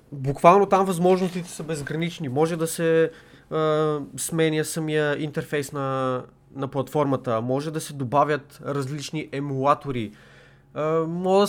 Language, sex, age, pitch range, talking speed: Bulgarian, male, 20-39, 130-160 Hz, 125 wpm